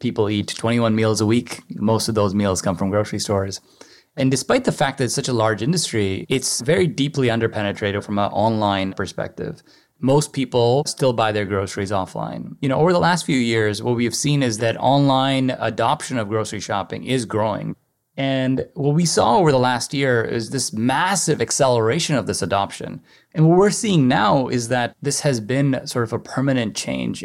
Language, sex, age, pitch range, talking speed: English, male, 20-39, 105-135 Hz, 195 wpm